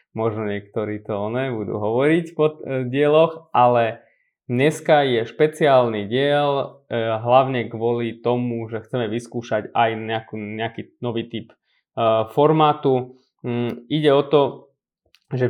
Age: 20-39